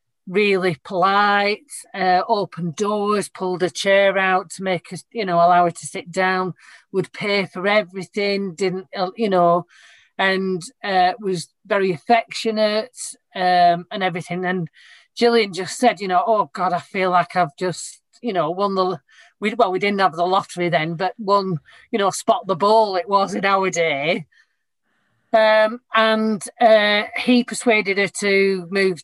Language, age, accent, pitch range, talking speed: English, 40-59, British, 180-215 Hz, 165 wpm